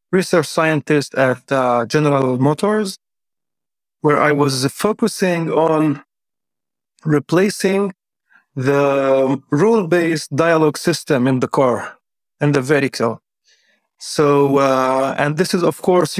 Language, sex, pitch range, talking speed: English, male, 140-170 Hz, 110 wpm